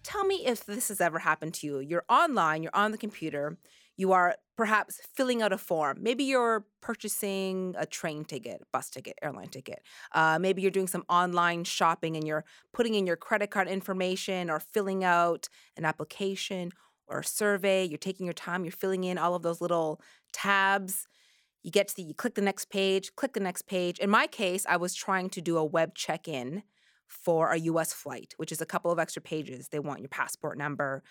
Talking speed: 200 wpm